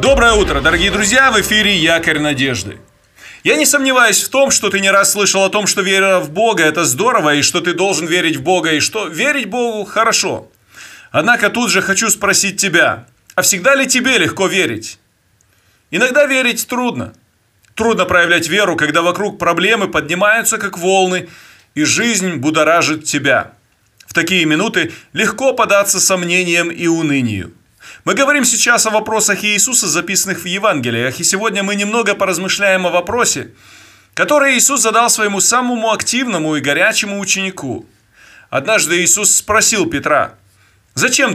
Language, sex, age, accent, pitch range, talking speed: Russian, male, 30-49, native, 160-225 Hz, 150 wpm